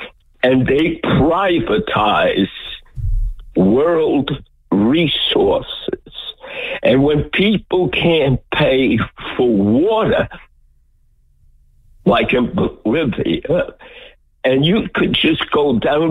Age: 60-79